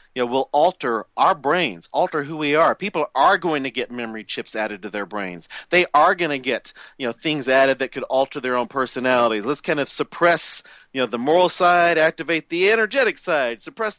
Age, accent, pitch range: 40-59, American, 125-170 Hz